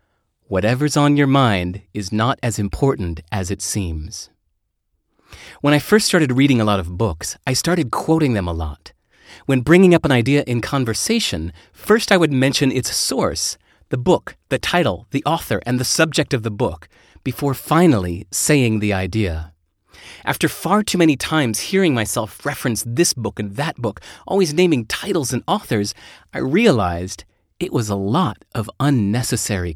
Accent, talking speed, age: American, 165 wpm, 30-49